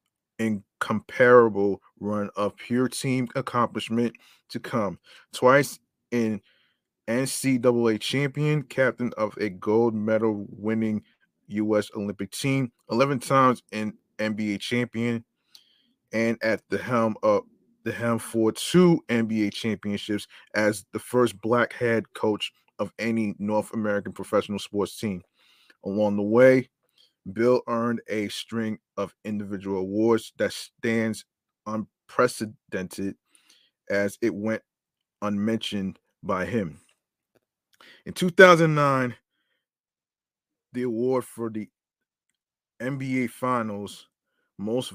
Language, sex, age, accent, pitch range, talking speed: English, male, 20-39, American, 105-125 Hz, 105 wpm